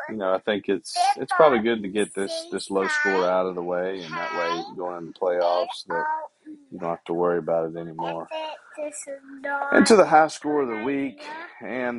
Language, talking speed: English, 210 wpm